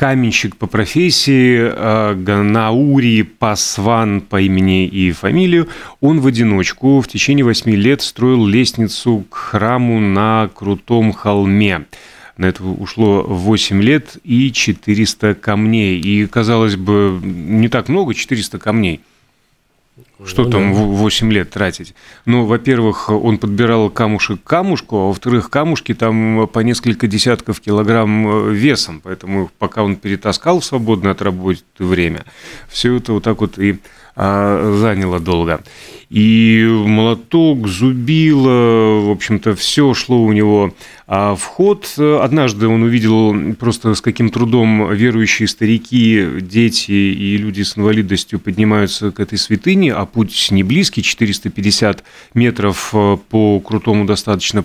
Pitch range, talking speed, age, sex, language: 100-120 Hz, 125 wpm, 30-49, male, Russian